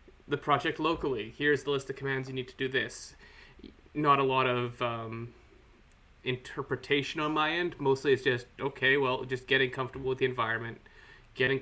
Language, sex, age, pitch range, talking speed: English, male, 20-39, 120-140 Hz, 175 wpm